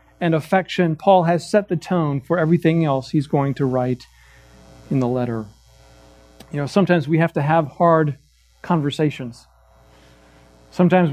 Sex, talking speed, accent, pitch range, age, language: male, 145 wpm, American, 130-195 Hz, 40-59, English